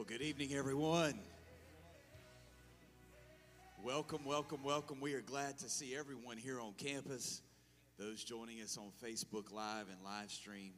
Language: English